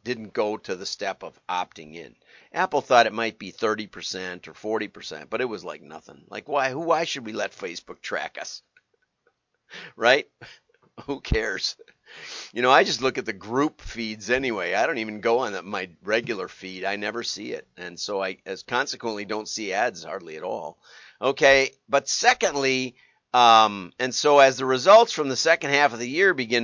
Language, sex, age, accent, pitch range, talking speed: English, male, 50-69, American, 110-140 Hz, 195 wpm